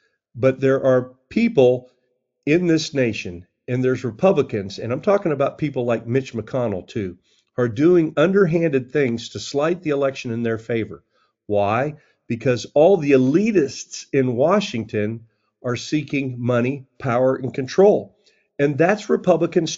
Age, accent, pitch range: 50-69, American, 115-150 Hz